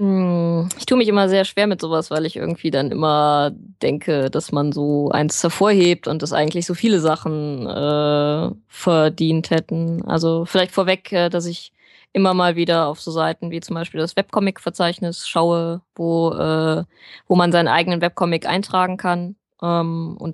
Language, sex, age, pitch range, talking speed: German, female, 20-39, 165-190 Hz, 160 wpm